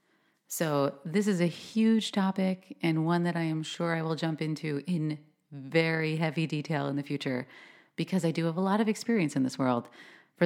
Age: 30-49